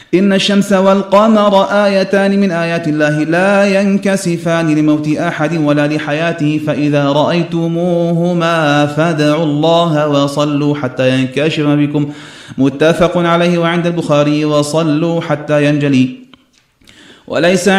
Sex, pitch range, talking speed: male, 130-170 Hz, 100 wpm